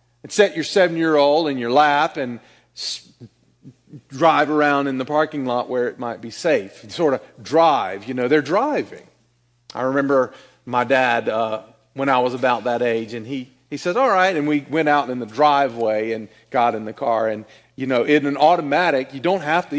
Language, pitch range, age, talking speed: English, 120-165 Hz, 40-59, 195 wpm